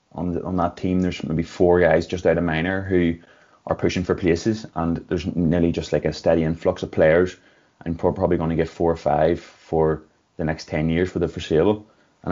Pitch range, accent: 80-90 Hz, Irish